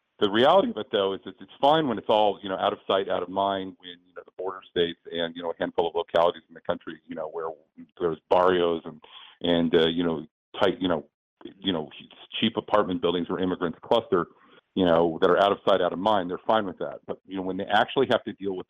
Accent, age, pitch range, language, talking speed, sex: American, 40-59, 85-100 Hz, English, 255 wpm, male